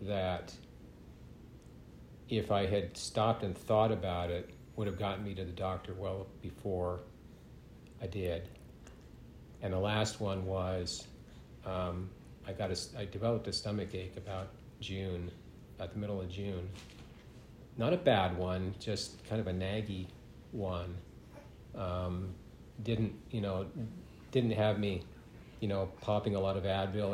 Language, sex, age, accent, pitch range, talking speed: English, male, 50-69, American, 90-105 Hz, 145 wpm